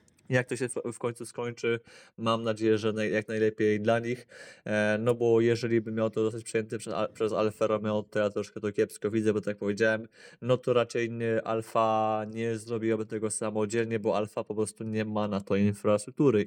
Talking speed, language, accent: 205 wpm, Polish, native